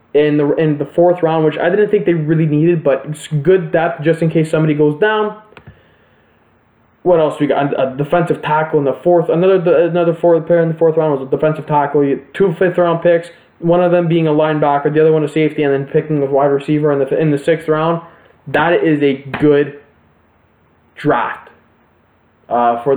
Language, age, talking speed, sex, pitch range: English, 20-39, 205 wpm, male, 135-165 Hz